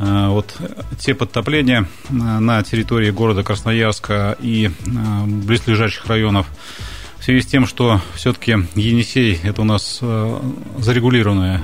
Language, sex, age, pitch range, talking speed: Russian, male, 30-49, 100-120 Hz, 110 wpm